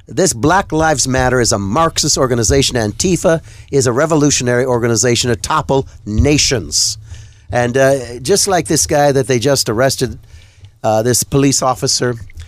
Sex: male